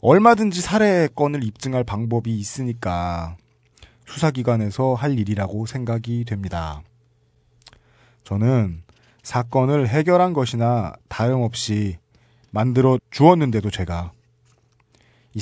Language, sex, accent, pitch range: Korean, male, native, 110-140 Hz